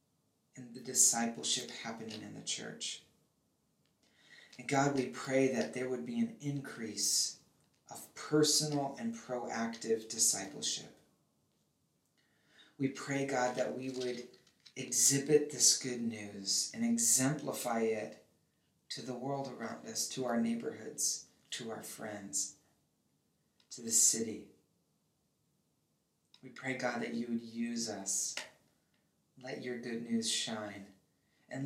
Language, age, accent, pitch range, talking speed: English, 40-59, American, 115-130 Hz, 120 wpm